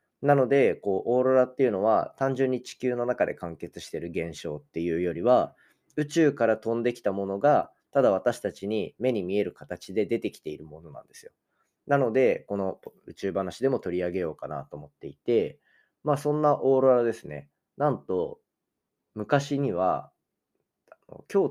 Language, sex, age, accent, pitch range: Japanese, male, 20-39, native, 95-135 Hz